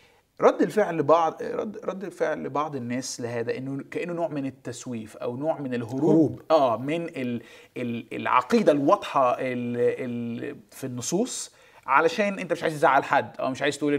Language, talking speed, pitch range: Arabic, 145 wpm, 125-170 Hz